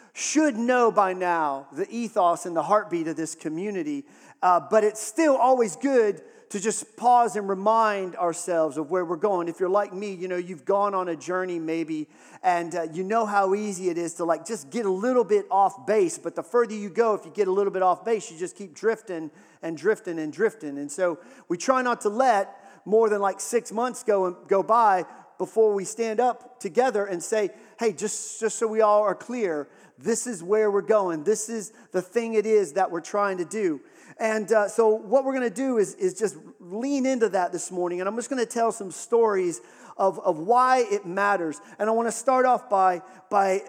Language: English